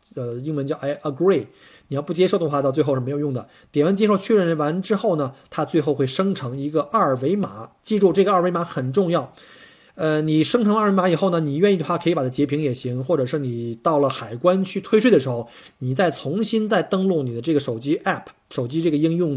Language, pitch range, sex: Chinese, 130-180 Hz, male